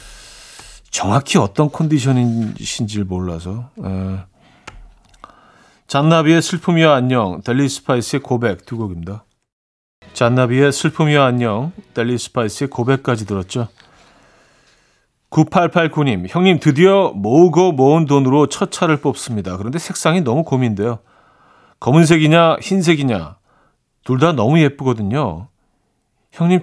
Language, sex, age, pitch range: Korean, male, 40-59, 110-165 Hz